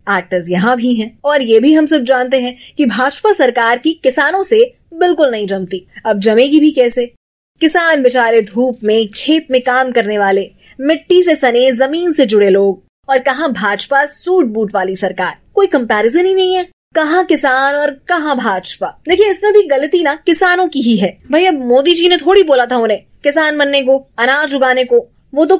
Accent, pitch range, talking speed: native, 240-330 Hz, 190 wpm